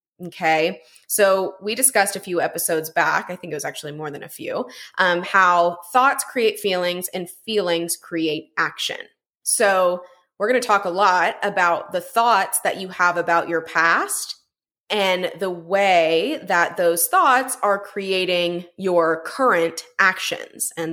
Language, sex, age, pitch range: English, female, 20-39, 175-255 Hz